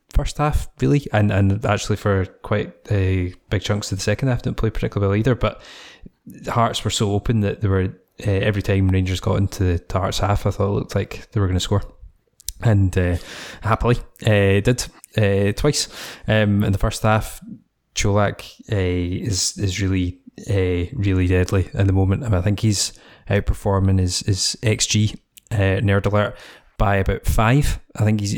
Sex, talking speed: male, 190 wpm